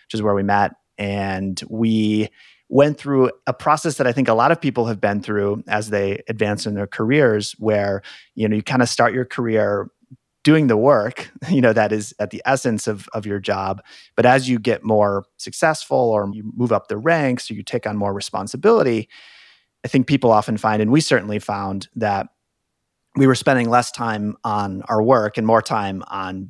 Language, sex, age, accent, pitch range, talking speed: English, male, 30-49, American, 100-120 Hz, 200 wpm